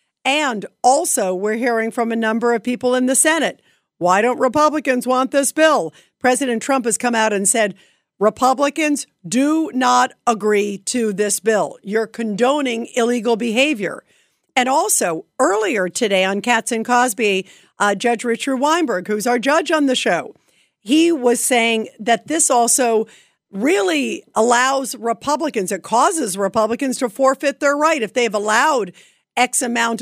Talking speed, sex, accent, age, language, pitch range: 150 wpm, female, American, 50-69, English, 220-280 Hz